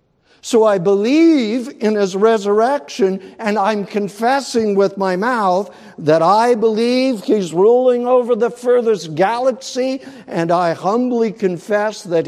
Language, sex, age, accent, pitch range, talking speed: English, male, 60-79, American, 140-195 Hz, 125 wpm